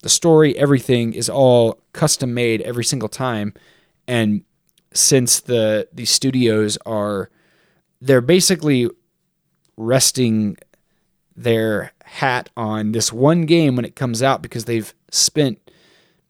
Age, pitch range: 20-39, 115-140 Hz